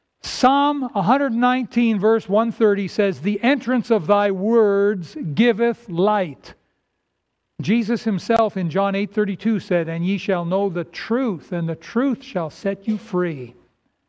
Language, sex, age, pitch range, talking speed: English, male, 60-79, 180-225 Hz, 135 wpm